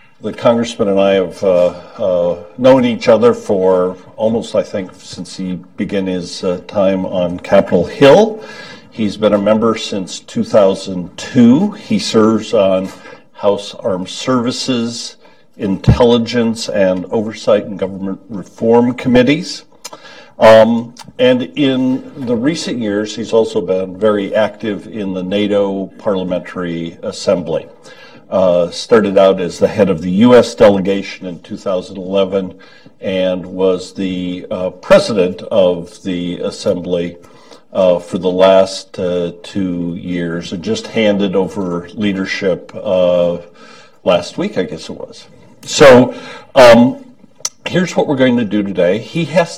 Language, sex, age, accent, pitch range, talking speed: English, male, 50-69, American, 90-115 Hz, 130 wpm